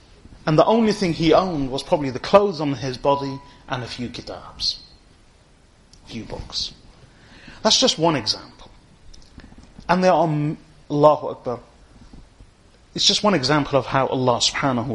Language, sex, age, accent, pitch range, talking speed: English, male, 30-49, British, 110-165 Hz, 155 wpm